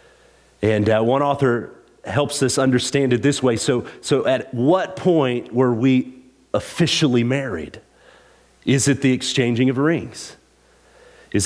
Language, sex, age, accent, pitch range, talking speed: English, male, 40-59, American, 95-135 Hz, 135 wpm